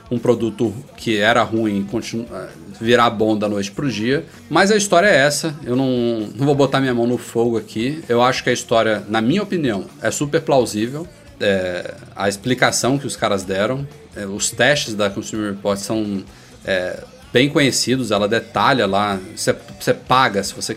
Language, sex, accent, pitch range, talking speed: Portuguese, male, Brazilian, 105-125 Hz, 170 wpm